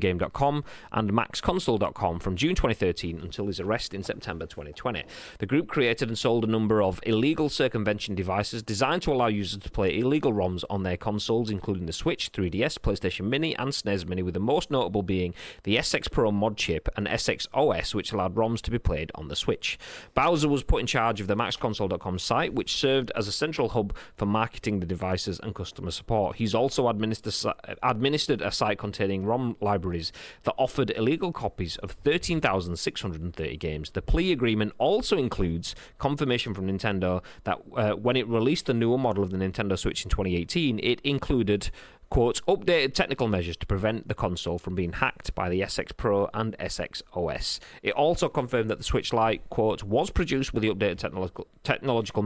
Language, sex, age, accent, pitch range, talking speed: English, male, 30-49, British, 95-120 Hz, 180 wpm